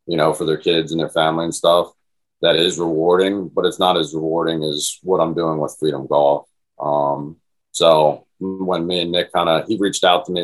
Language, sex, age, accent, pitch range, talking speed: English, male, 30-49, American, 85-105 Hz, 220 wpm